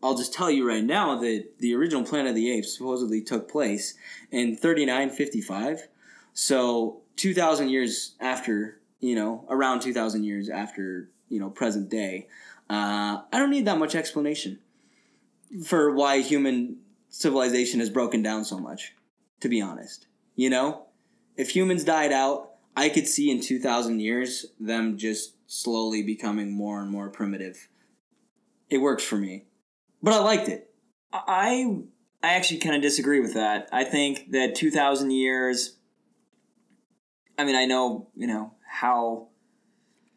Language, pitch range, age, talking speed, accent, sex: English, 115-185 Hz, 20-39, 150 wpm, American, male